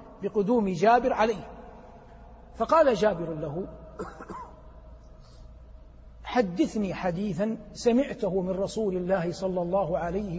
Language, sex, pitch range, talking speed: Arabic, male, 165-205 Hz, 85 wpm